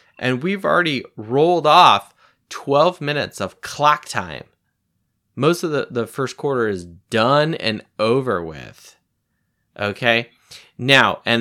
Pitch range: 110-140 Hz